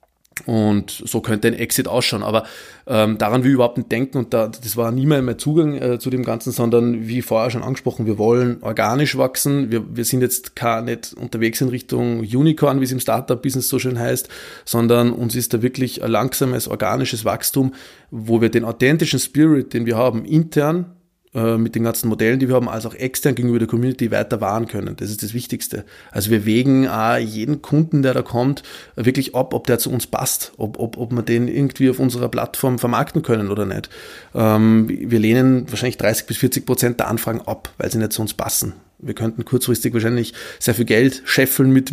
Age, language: 20-39, German